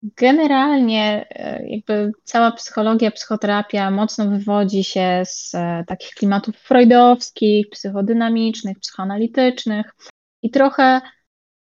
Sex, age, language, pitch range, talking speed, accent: female, 20-39, Polish, 200-245 Hz, 80 wpm, native